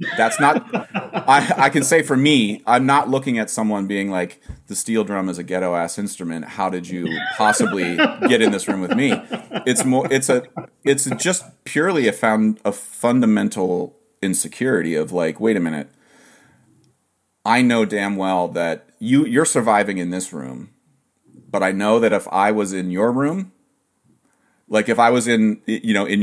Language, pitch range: English, 90-120 Hz